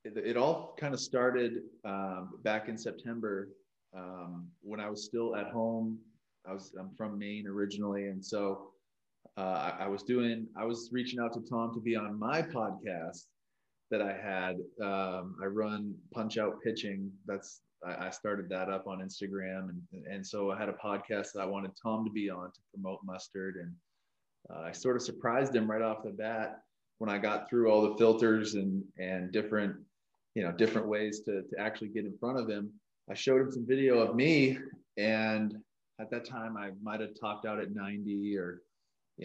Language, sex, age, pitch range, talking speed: English, male, 20-39, 100-120 Hz, 195 wpm